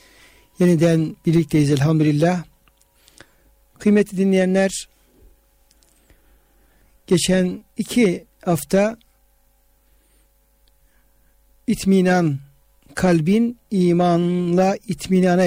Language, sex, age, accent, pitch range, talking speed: Turkish, male, 60-79, native, 160-195 Hz, 45 wpm